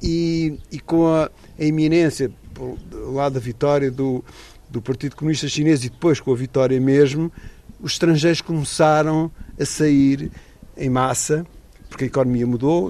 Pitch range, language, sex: 130-165 Hz, Portuguese, male